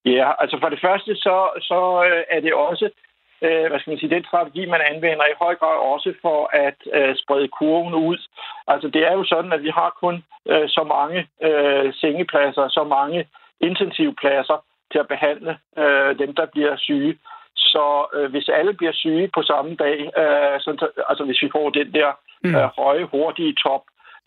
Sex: male